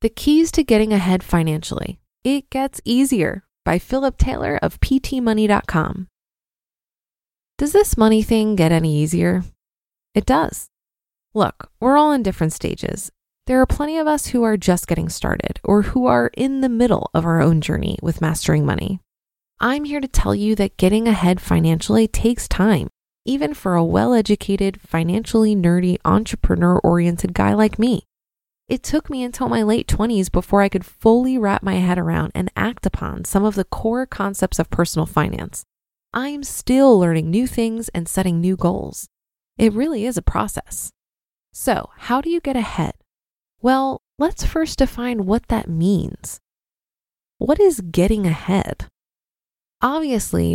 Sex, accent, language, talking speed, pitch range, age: female, American, English, 155 wpm, 170-245 Hz, 20-39